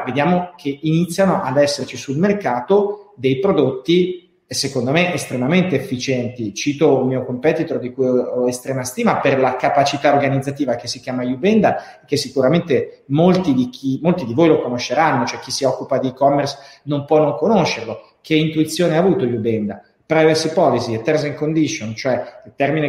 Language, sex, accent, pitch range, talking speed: Italian, male, native, 130-170 Hz, 165 wpm